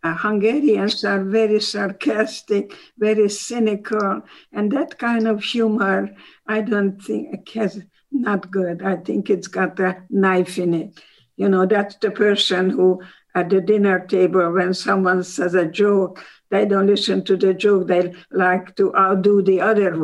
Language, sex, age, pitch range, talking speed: English, female, 60-79, 180-205 Hz, 160 wpm